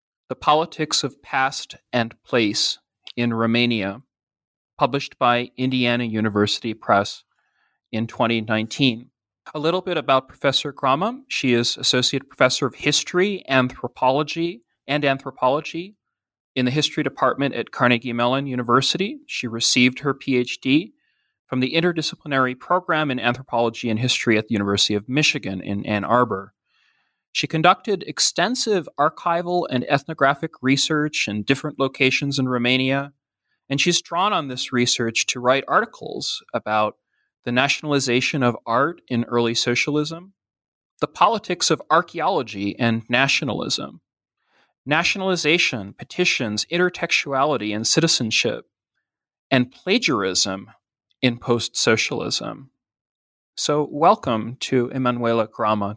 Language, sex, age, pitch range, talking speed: English, male, 30-49, 120-150 Hz, 115 wpm